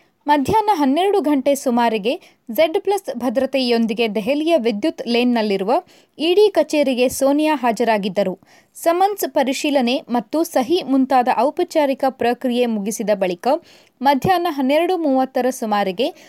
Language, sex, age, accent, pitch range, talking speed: Kannada, female, 20-39, native, 235-315 Hz, 100 wpm